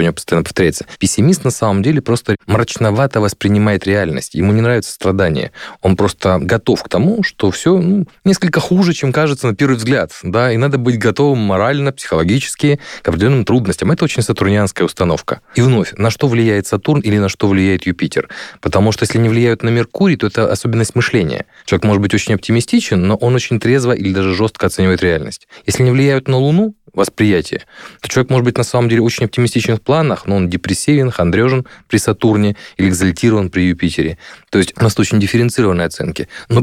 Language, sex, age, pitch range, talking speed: Russian, male, 20-39, 95-125 Hz, 185 wpm